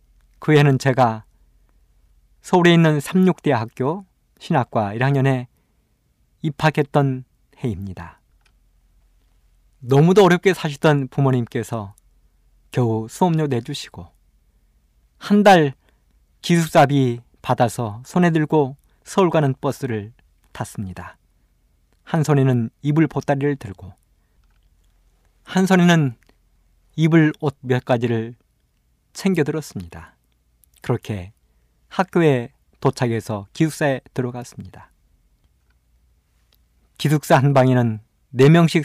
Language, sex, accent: Korean, male, native